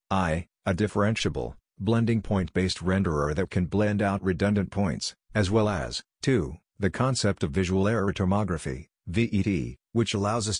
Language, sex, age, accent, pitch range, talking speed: English, male, 50-69, American, 90-105 Hz, 145 wpm